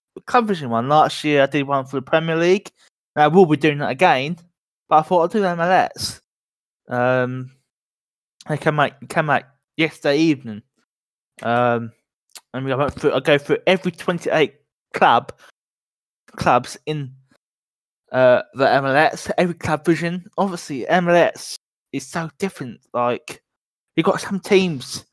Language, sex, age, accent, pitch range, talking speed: English, male, 20-39, British, 130-170 Hz, 155 wpm